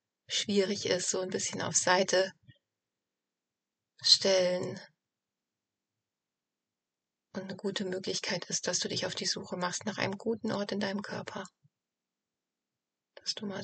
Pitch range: 190-215 Hz